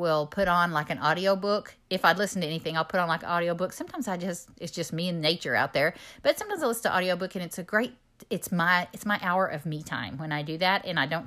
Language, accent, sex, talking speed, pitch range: English, American, female, 290 wpm, 155-185 Hz